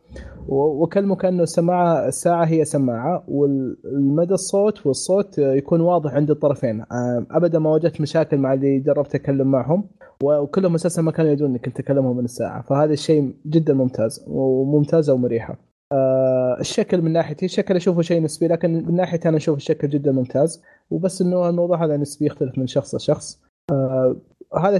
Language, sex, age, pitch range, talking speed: Arabic, male, 20-39, 140-175 Hz, 150 wpm